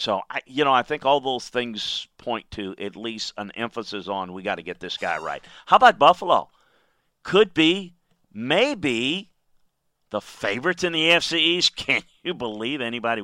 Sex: male